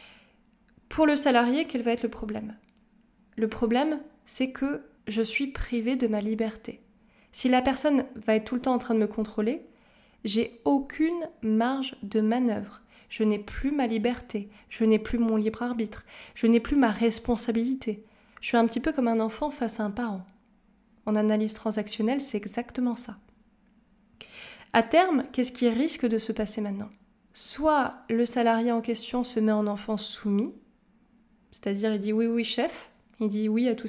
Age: 20-39